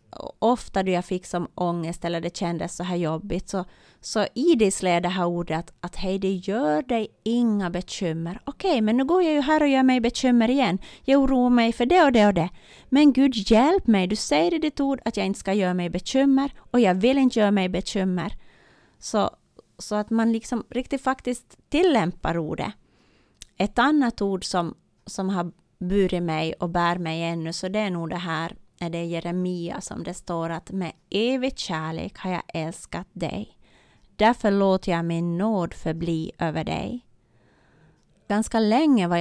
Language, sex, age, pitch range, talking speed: Swedish, female, 30-49, 175-230 Hz, 185 wpm